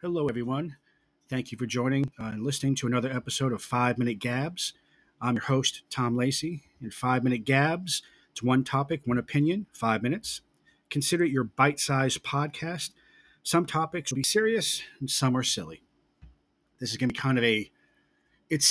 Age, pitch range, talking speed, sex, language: 40-59, 120-140 Hz, 180 wpm, male, English